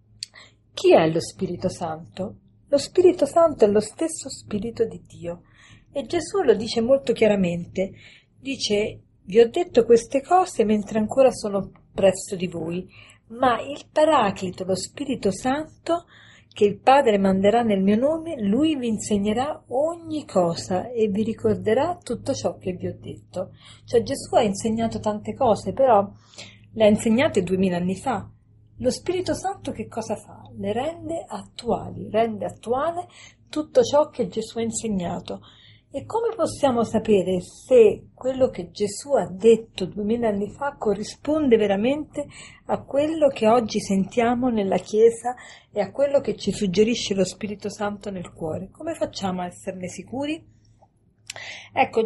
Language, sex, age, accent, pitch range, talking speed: Italian, female, 40-59, native, 195-275 Hz, 150 wpm